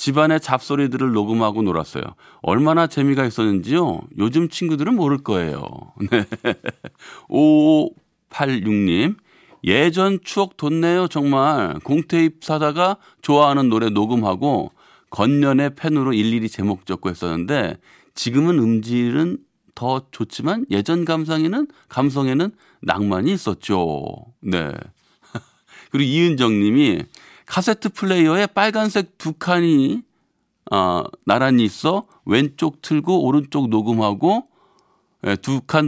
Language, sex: Korean, male